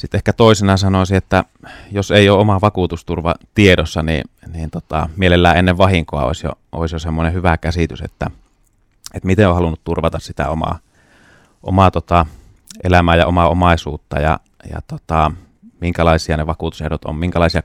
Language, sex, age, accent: Finnish, male, 30-49, native